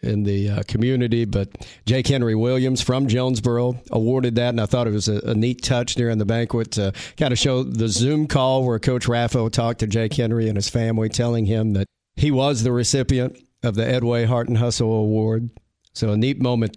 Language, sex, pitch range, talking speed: English, male, 115-135 Hz, 210 wpm